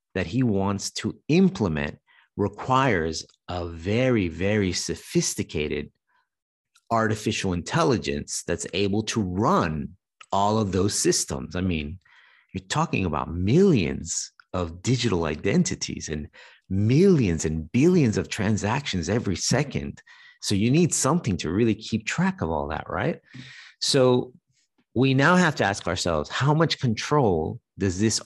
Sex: male